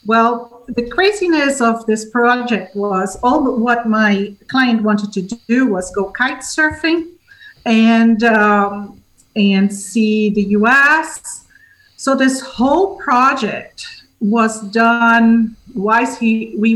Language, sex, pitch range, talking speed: English, female, 205-245 Hz, 120 wpm